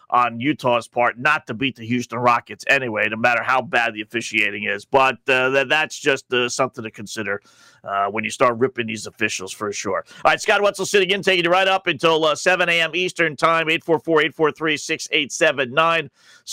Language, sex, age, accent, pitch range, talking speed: English, male, 40-59, American, 155-225 Hz, 185 wpm